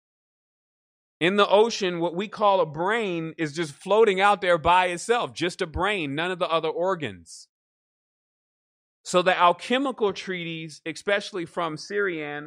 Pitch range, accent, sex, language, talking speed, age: 150-195 Hz, American, male, English, 145 wpm, 30-49